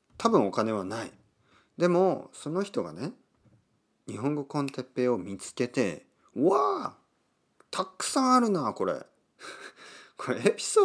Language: Japanese